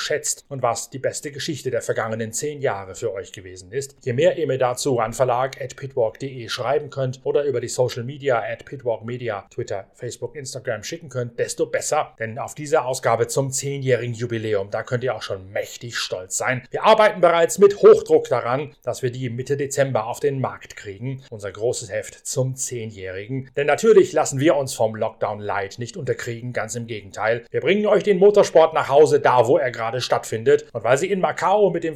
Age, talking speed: 30-49, 200 wpm